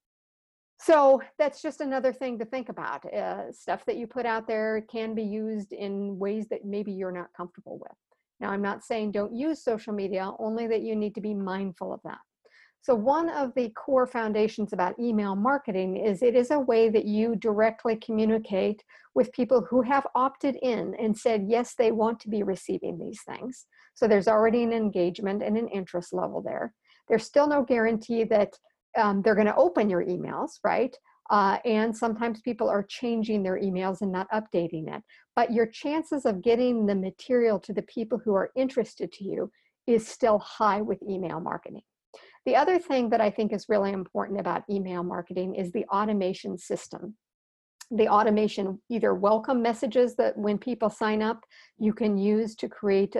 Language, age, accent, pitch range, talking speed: English, 50-69, American, 200-245 Hz, 185 wpm